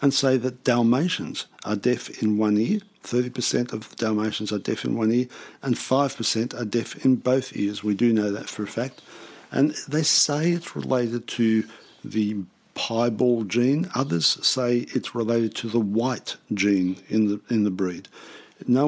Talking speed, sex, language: 170 wpm, male, English